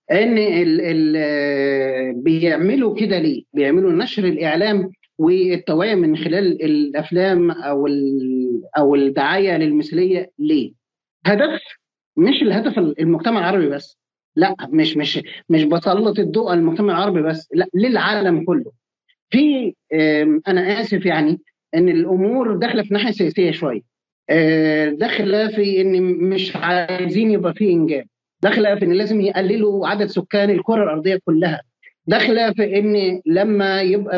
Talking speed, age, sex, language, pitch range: 125 wpm, 30-49, male, Arabic, 160-205 Hz